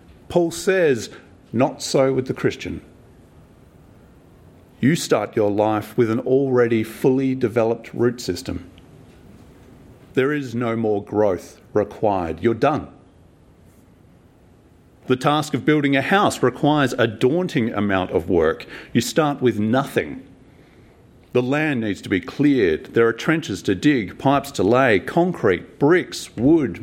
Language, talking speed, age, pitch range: English, 130 wpm, 40-59, 105-135 Hz